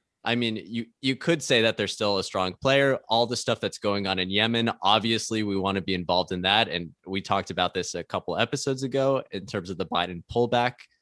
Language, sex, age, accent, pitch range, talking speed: English, male, 20-39, American, 105-145 Hz, 235 wpm